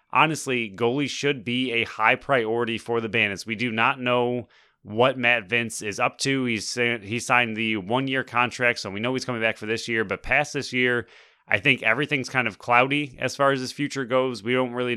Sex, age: male, 30-49